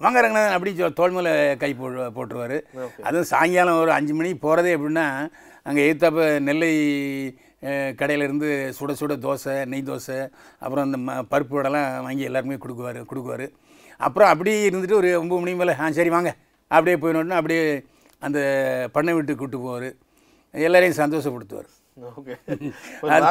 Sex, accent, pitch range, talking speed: male, native, 140-170 Hz, 130 wpm